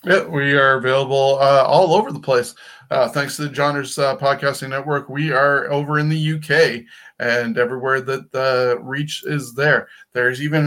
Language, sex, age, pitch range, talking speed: English, male, 20-39, 120-145 Hz, 180 wpm